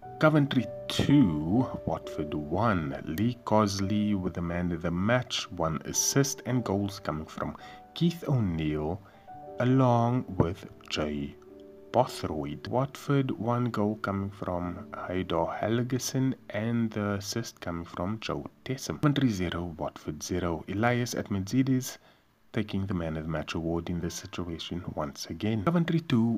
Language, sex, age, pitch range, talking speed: English, male, 30-49, 90-125 Hz, 130 wpm